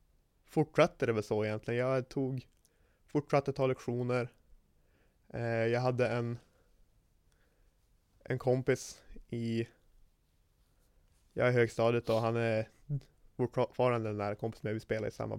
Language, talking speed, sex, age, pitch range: Swedish, 115 wpm, male, 20-39, 105-125 Hz